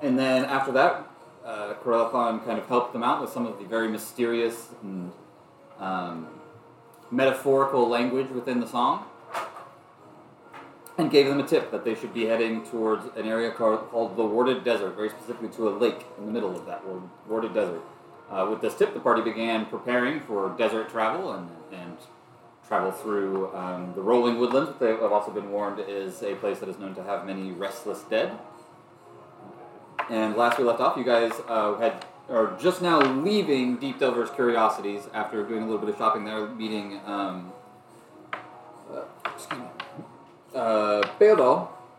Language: English